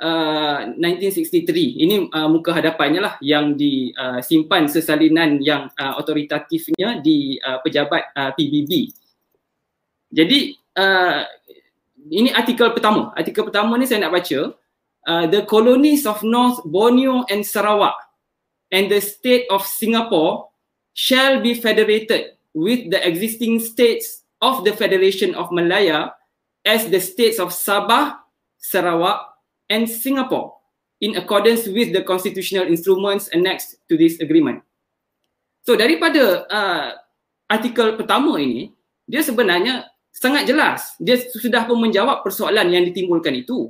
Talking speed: 125 wpm